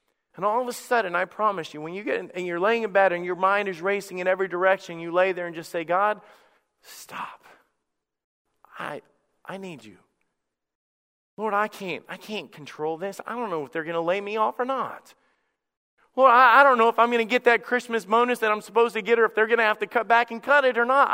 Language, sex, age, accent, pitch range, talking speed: English, male, 40-59, American, 155-215 Hz, 250 wpm